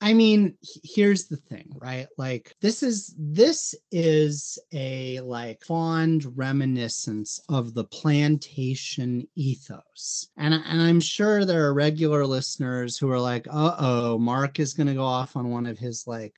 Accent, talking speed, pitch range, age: American, 155 wpm, 120-160 Hz, 30-49